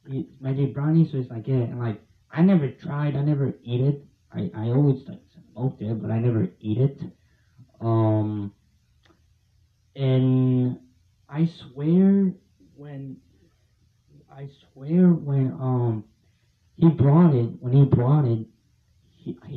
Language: English